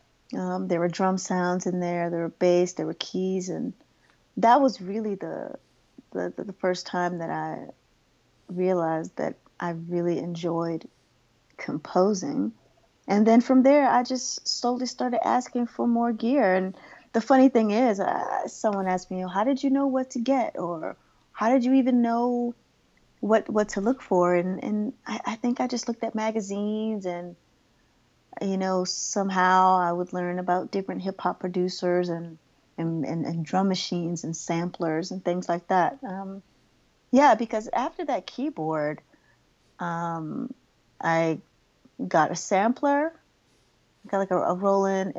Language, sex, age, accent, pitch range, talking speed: English, female, 30-49, American, 175-230 Hz, 160 wpm